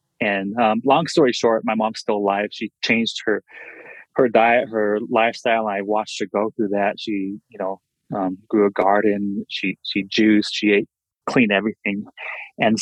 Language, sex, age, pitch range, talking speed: English, male, 20-39, 100-115 Hz, 175 wpm